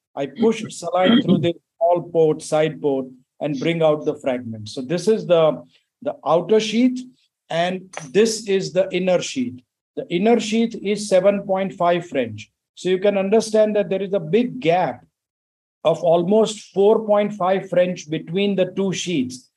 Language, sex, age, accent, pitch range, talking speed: English, male, 50-69, Indian, 155-195 Hz, 155 wpm